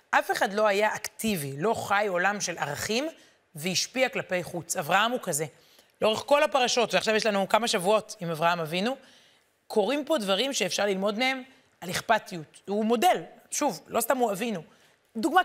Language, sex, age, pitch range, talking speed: Hebrew, female, 30-49, 195-255 Hz, 165 wpm